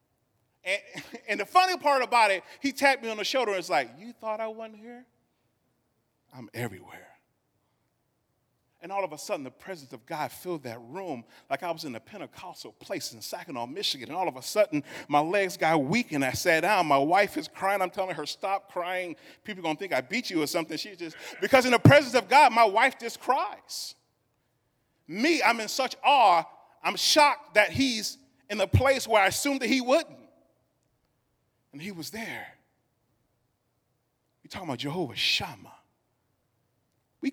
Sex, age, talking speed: male, 30-49, 190 wpm